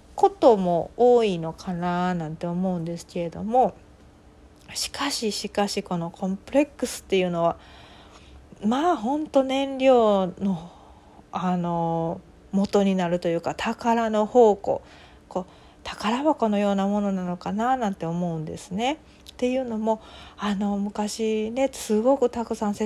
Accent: native